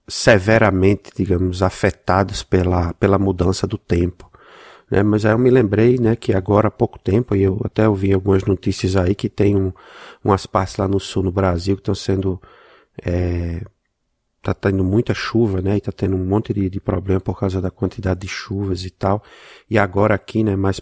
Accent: Brazilian